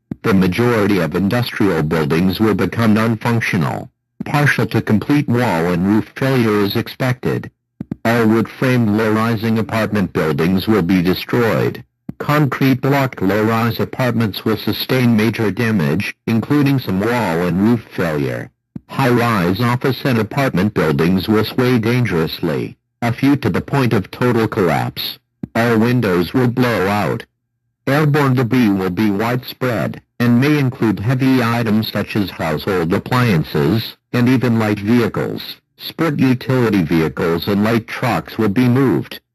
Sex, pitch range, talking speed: male, 105-125 Hz, 130 wpm